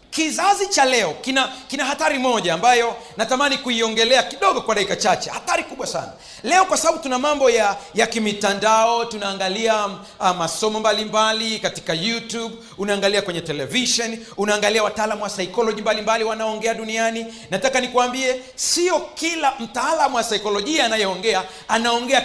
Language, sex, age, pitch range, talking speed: Swahili, male, 40-59, 220-320 Hz, 135 wpm